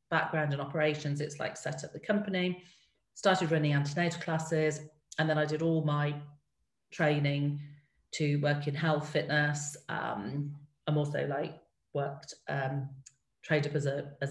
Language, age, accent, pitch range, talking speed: English, 40-59, British, 145-160 Hz, 145 wpm